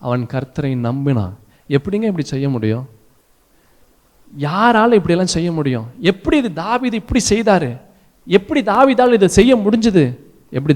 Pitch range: 115-175 Hz